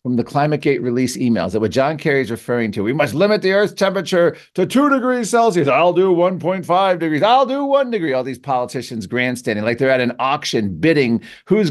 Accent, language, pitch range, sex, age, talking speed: American, English, 125-175 Hz, male, 50-69, 215 wpm